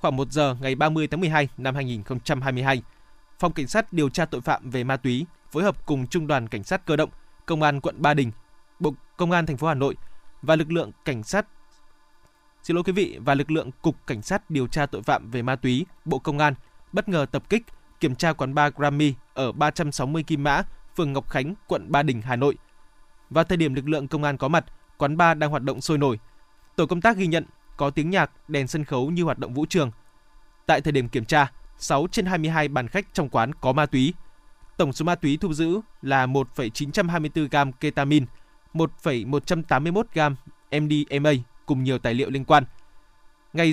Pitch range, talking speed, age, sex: 135-160 Hz, 205 wpm, 20-39, male